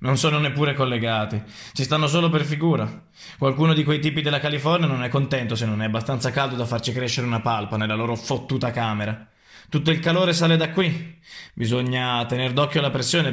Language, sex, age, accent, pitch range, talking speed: Italian, male, 20-39, native, 110-135 Hz, 195 wpm